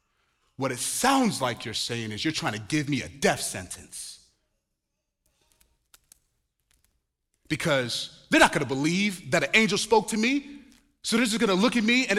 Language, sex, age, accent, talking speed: English, male, 30-49, American, 175 wpm